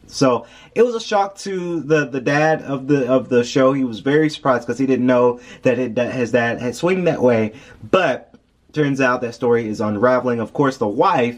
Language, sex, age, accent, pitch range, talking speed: English, male, 30-49, American, 115-150 Hz, 220 wpm